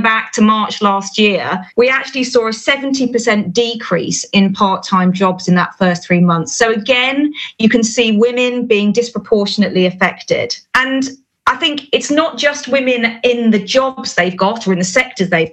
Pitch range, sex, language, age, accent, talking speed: 195-245 Hz, female, English, 40-59, British, 175 wpm